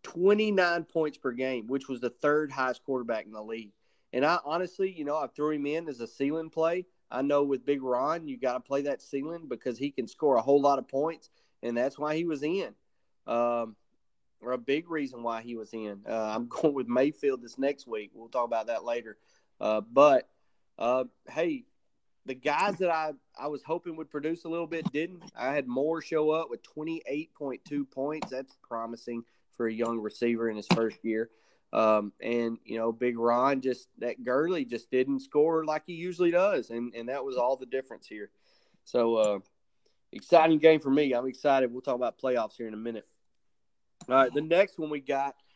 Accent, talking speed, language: American, 205 wpm, English